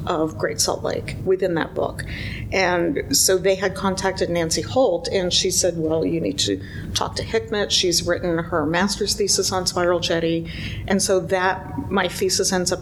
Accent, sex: American, female